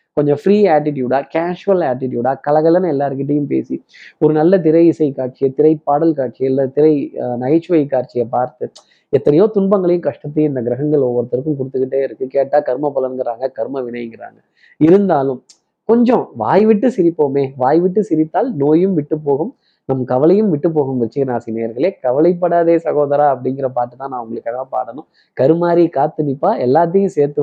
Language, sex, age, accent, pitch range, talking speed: Tamil, male, 20-39, native, 130-160 Hz, 125 wpm